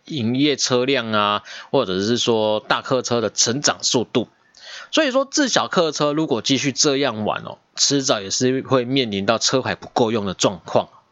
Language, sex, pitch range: Chinese, male, 110-170 Hz